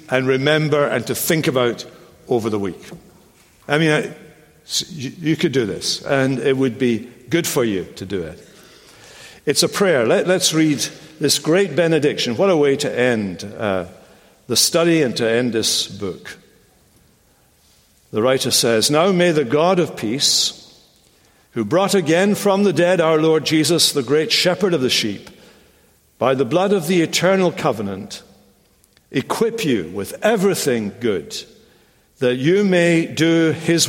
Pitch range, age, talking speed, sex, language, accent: 130-175 Hz, 60-79, 155 wpm, male, English, British